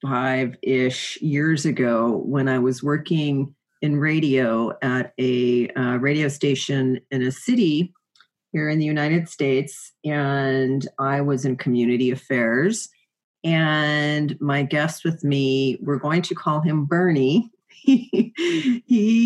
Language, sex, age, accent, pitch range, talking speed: English, female, 40-59, American, 135-180 Hz, 125 wpm